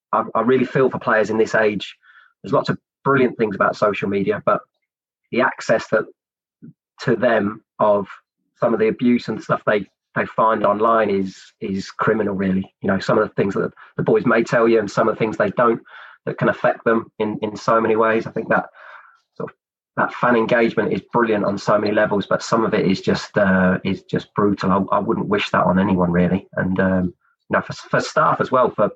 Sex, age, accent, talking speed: male, 30-49, British, 220 wpm